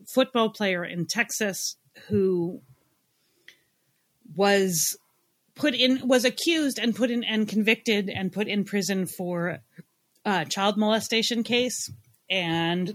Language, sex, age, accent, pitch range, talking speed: English, female, 30-49, American, 155-205 Hz, 115 wpm